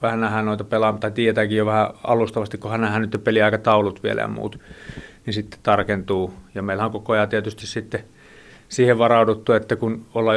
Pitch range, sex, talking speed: 100-110 Hz, male, 175 wpm